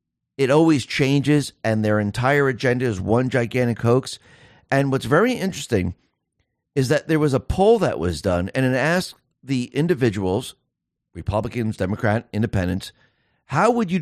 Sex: male